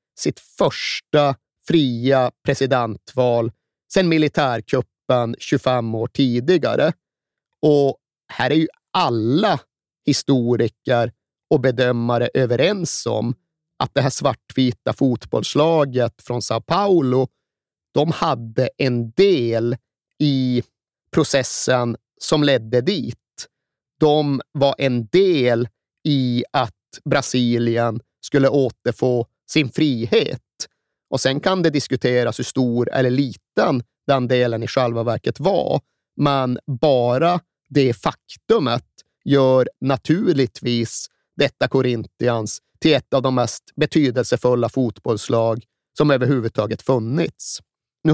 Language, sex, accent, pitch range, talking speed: Swedish, male, native, 120-145 Hz, 100 wpm